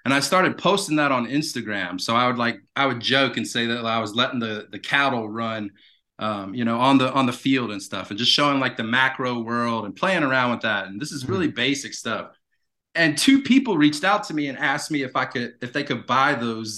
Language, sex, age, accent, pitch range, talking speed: English, male, 30-49, American, 115-145 Hz, 250 wpm